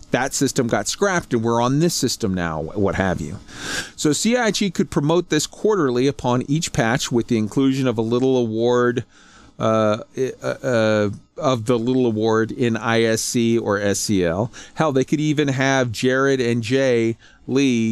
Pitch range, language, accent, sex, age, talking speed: 115-160 Hz, English, American, male, 40-59, 160 wpm